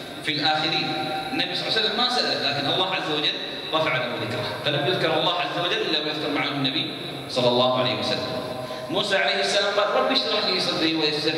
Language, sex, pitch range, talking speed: Arabic, male, 130-155 Hz, 195 wpm